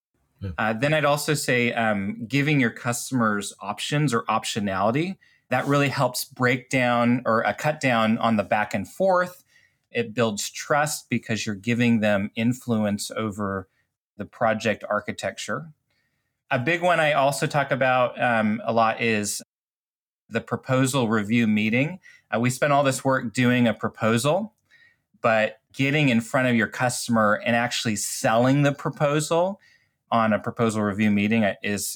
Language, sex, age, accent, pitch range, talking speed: English, male, 30-49, American, 115-145 Hz, 150 wpm